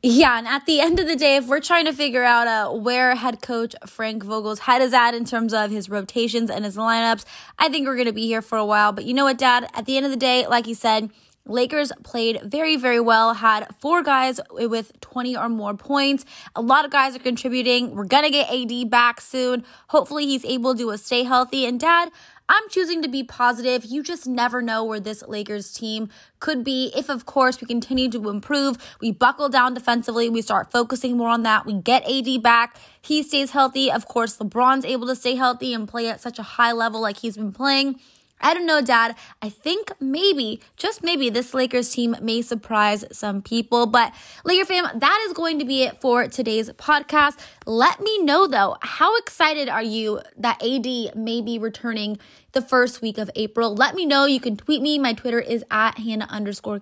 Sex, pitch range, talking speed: female, 230-280 Hz, 215 wpm